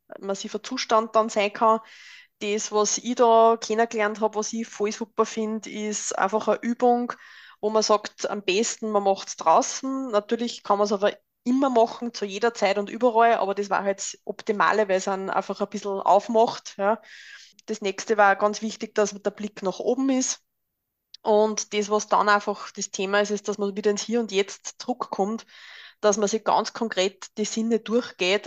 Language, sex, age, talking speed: German, female, 20-39, 190 wpm